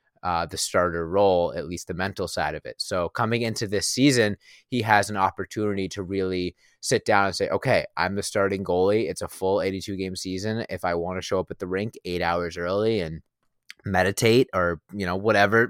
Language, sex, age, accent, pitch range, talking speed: English, male, 20-39, American, 95-105 Hz, 210 wpm